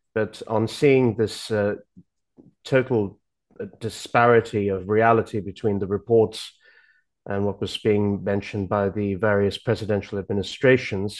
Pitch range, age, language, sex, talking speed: 100-115 Hz, 30-49, English, male, 120 wpm